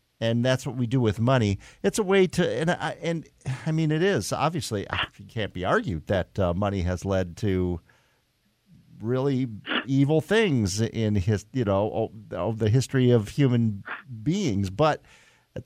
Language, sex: English, male